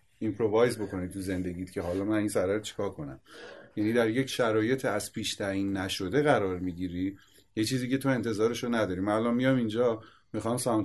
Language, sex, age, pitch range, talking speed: Persian, male, 30-49, 95-115 Hz, 190 wpm